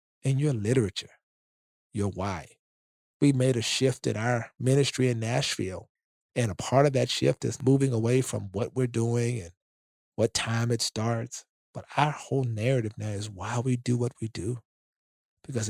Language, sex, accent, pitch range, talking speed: English, male, American, 110-160 Hz, 170 wpm